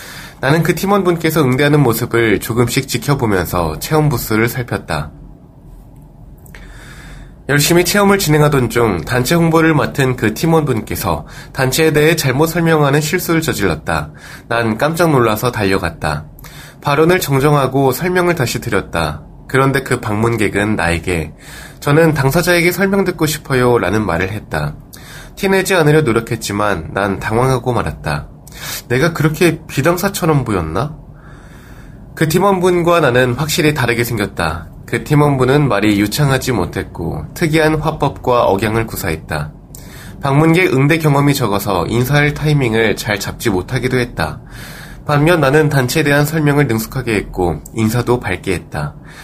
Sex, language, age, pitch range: male, Korean, 20-39, 110-155 Hz